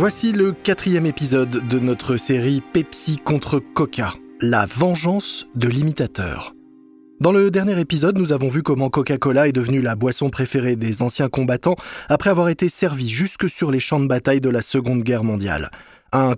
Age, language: 20-39, French